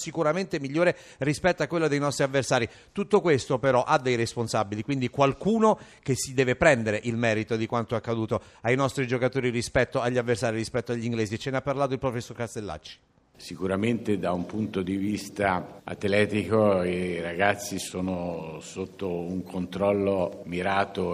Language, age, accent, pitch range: Italian, 50-69, native, 90-120 Hz